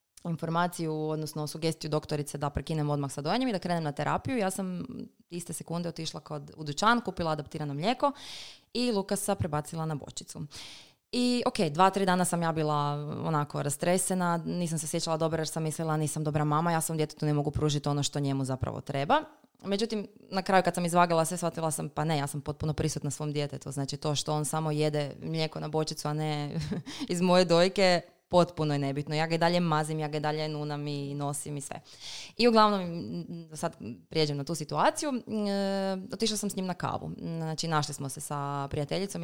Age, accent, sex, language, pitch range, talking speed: 20-39, Serbian, female, Croatian, 150-190 Hz, 190 wpm